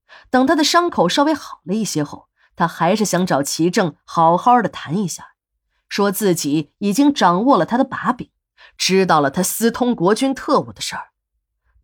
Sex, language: female, Chinese